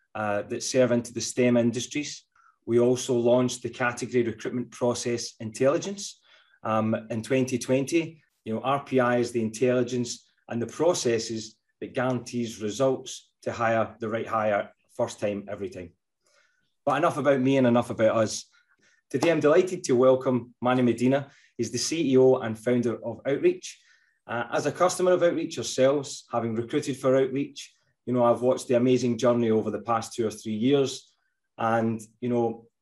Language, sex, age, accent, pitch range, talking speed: English, male, 30-49, British, 115-130 Hz, 165 wpm